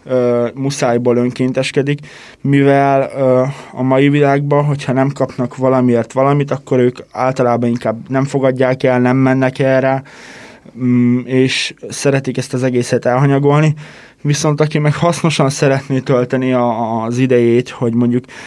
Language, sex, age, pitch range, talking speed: Hungarian, male, 20-39, 125-145 Hz, 120 wpm